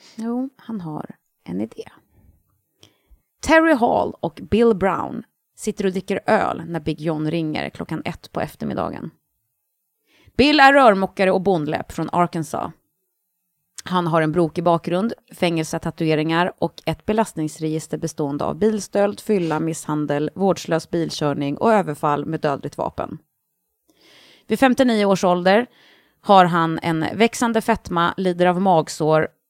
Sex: female